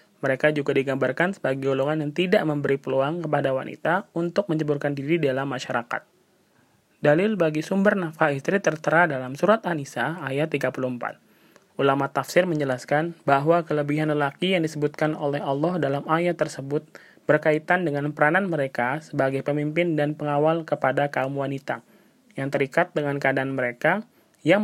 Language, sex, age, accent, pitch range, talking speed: Indonesian, male, 20-39, native, 140-170 Hz, 140 wpm